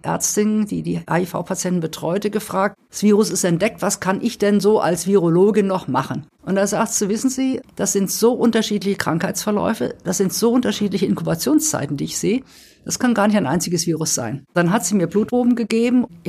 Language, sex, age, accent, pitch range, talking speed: German, female, 50-69, German, 175-215 Hz, 190 wpm